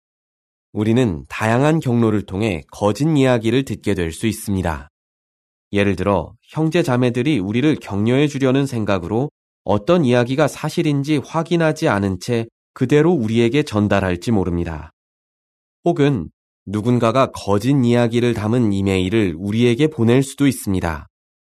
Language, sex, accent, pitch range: Korean, male, native, 95-130 Hz